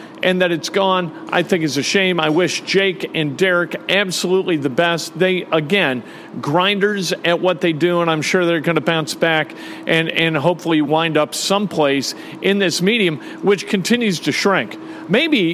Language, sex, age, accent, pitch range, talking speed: English, male, 50-69, American, 165-200 Hz, 180 wpm